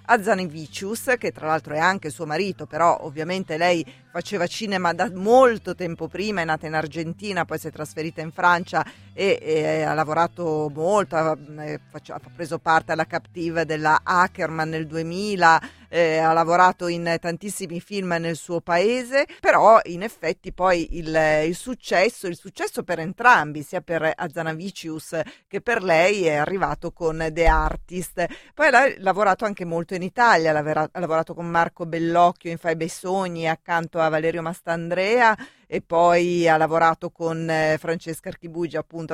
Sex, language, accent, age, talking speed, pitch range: female, Italian, native, 40-59, 155 wpm, 160-185 Hz